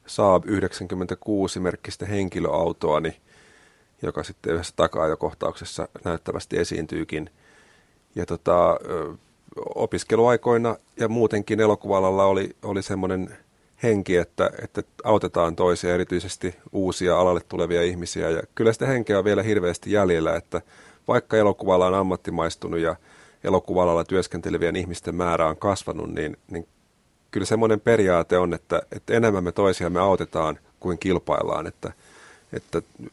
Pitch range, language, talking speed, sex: 85-100 Hz, Finnish, 115 wpm, male